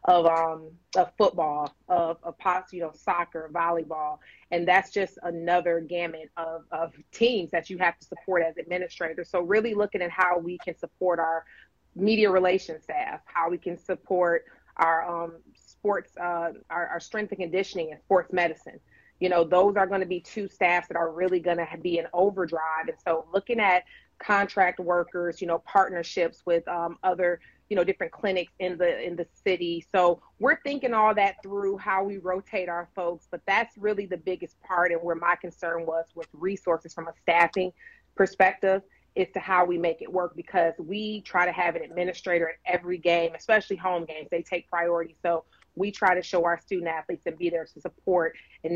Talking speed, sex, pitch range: 195 wpm, female, 170-190 Hz